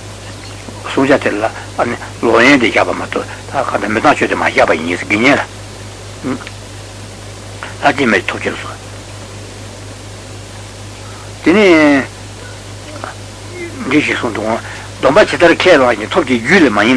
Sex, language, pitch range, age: male, Italian, 100-120 Hz, 60-79